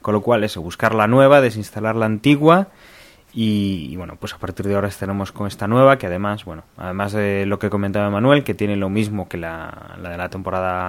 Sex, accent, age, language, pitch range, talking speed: male, Spanish, 20-39, Spanish, 90-110 Hz, 225 wpm